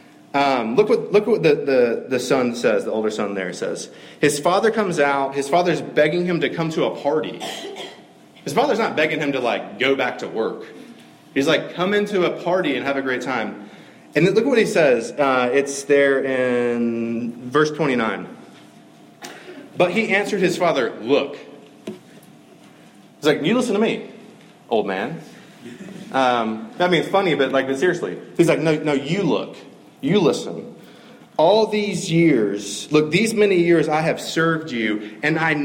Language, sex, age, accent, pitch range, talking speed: English, male, 30-49, American, 135-175 Hz, 180 wpm